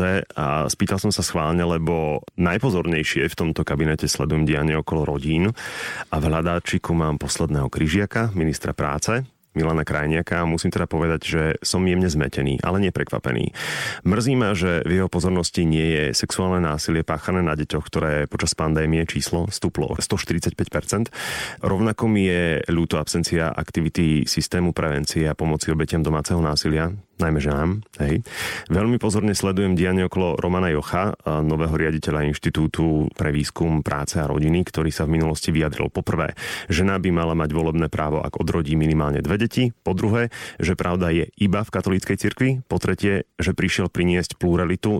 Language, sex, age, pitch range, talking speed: Slovak, male, 30-49, 80-90 Hz, 155 wpm